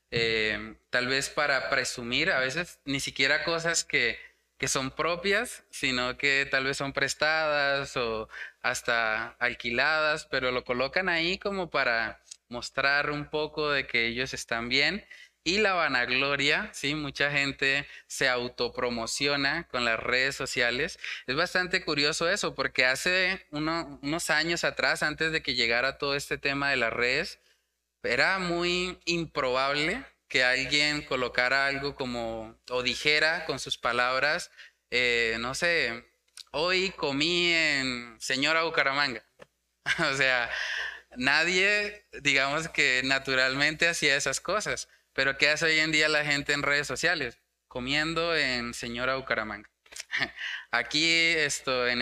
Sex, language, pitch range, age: male, Spanish, 125-160 Hz, 20-39